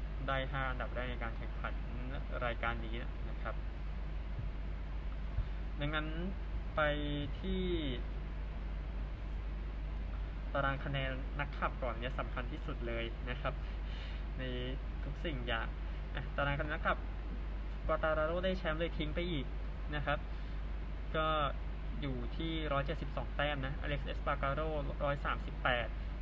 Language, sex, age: Thai, male, 20-39